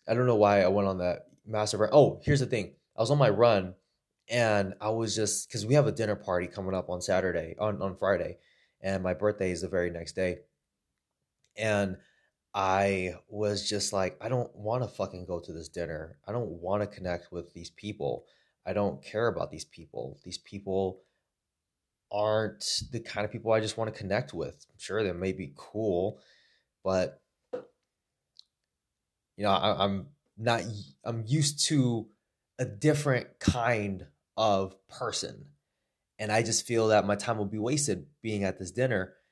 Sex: male